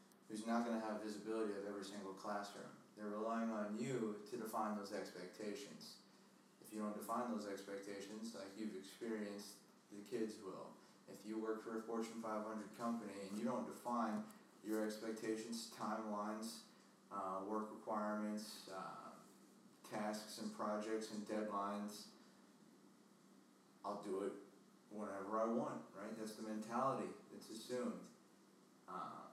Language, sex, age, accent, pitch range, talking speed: English, male, 30-49, American, 105-115 Hz, 135 wpm